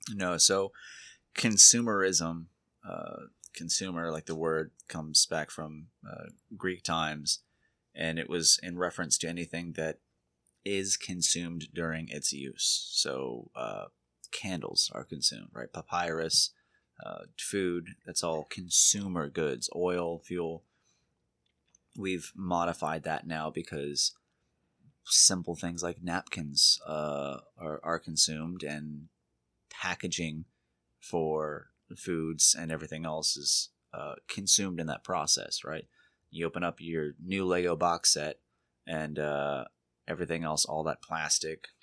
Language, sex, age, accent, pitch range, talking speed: English, male, 30-49, American, 70-85 Hz, 120 wpm